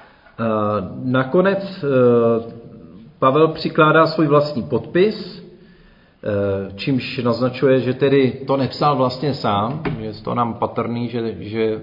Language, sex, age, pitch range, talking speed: Czech, male, 40-59, 115-135 Hz, 100 wpm